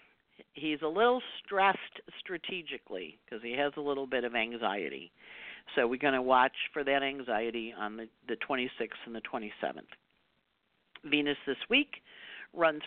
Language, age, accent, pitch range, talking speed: English, 50-69, American, 140-220 Hz, 150 wpm